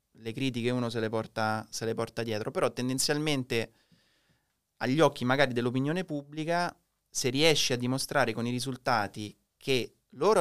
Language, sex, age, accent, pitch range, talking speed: Italian, male, 20-39, native, 115-150 Hz, 140 wpm